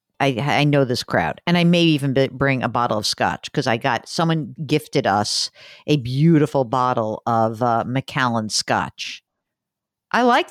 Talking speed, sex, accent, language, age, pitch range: 170 wpm, female, American, English, 50-69, 130-210 Hz